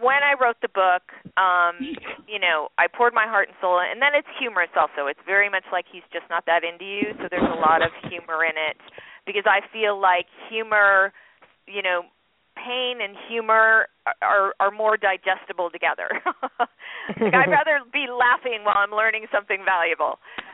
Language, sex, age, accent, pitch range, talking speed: English, female, 40-59, American, 180-240 Hz, 180 wpm